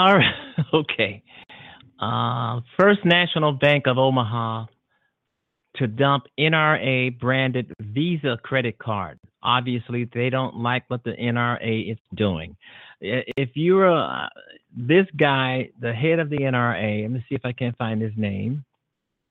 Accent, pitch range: American, 115-145 Hz